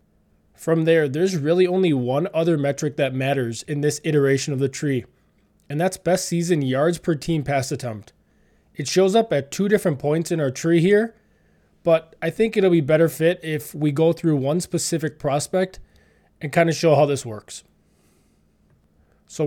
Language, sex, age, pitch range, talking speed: English, male, 20-39, 140-170 Hz, 180 wpm